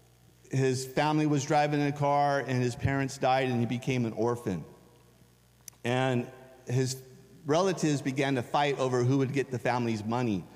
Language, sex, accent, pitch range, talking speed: English, male, American, 120-145 Hz, 165 wpm